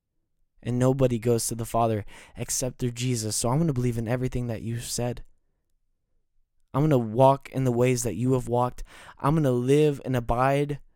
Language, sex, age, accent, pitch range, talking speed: English, male, 20-39, American, 105-125 Hz, 195 wpm